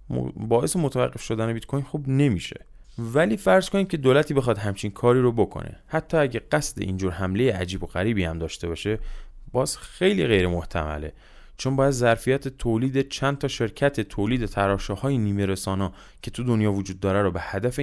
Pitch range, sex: 95-130 Hz, male